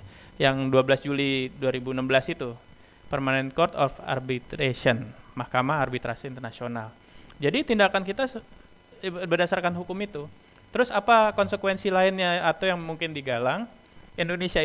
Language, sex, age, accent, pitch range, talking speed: Indonesian, male, 20-39, native, 130-185 Hz, 110 wpm